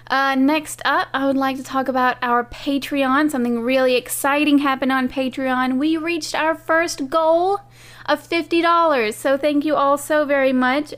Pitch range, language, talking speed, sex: 220-270 Hz, English, 170 wpm, female